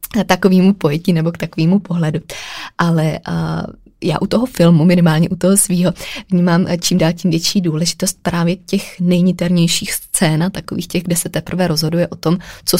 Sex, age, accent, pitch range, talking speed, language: female, 20-39, native, 160-180 Hz, 170 wpm, Czech